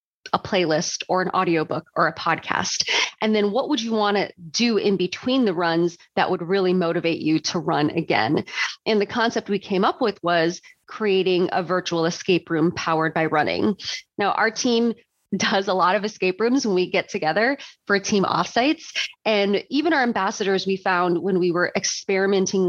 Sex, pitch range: female, 175-215 Hz